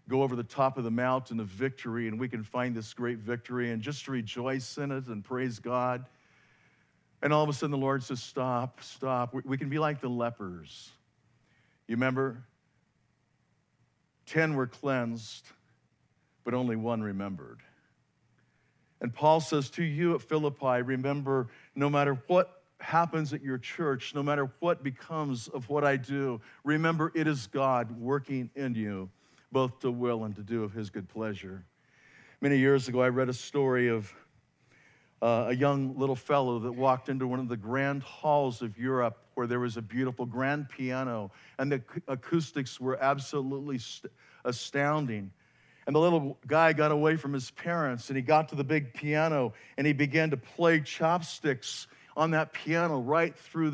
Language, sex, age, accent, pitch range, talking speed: English, male, 50-69, American, 120-150 Hz, 170 wpm